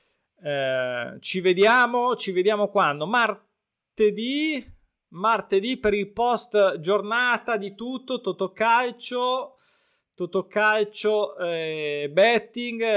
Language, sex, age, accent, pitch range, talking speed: Italian, male, 20-39, native, 160-210 Hz, 90 wpm